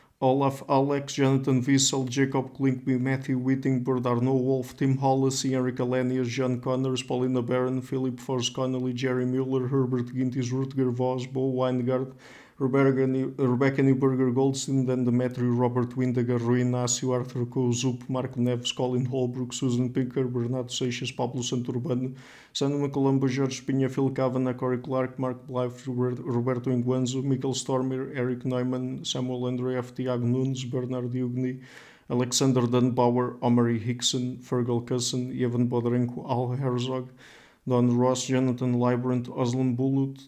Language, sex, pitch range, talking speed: English, male, 125-130 Hz, 130 wpm